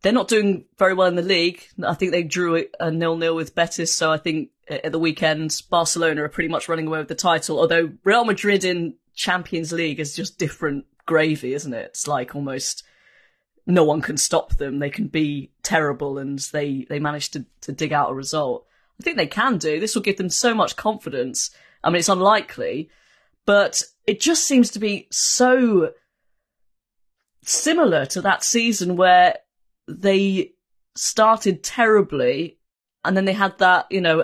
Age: 20-39